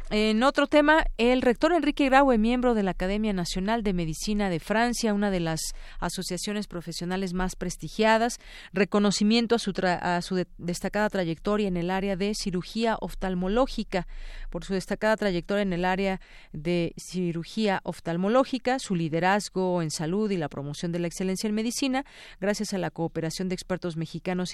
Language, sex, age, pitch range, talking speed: Spanish, female, 40-59, 170-220 Hz, 155 wpm